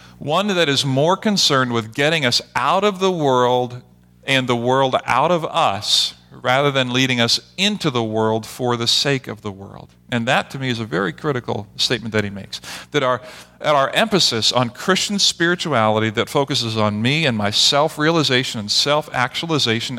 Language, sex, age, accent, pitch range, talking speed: English, male, 40-59, American, 110-145 Hz, 175 wpm